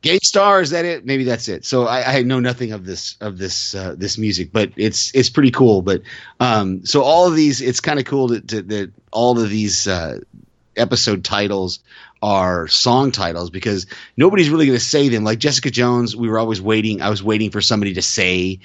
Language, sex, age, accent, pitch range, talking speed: English, male, 30-49, American, 100-125 Hz, 220 wpm